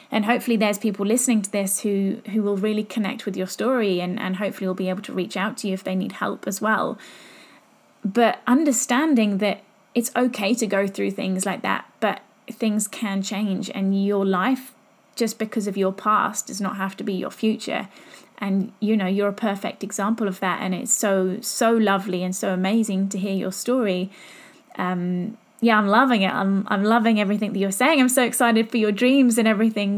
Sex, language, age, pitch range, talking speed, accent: female, English, 20-39, 200-245 Hz, 205 wpm, British